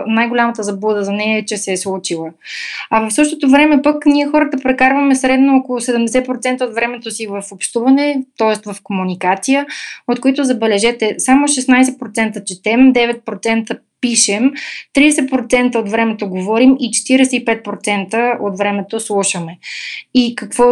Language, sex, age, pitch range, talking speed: Bulgarian, female, 20-39, 215-260 Hz, 135 wpm